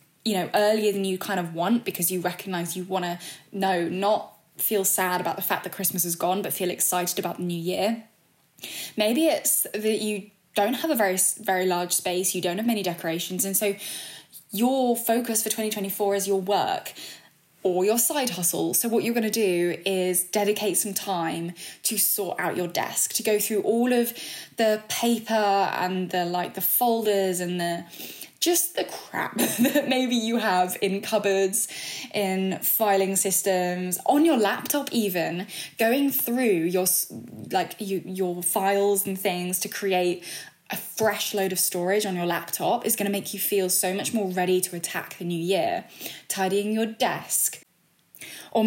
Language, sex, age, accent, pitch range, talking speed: English, female, 10-29, British, 180-220 Hz, 175 wpm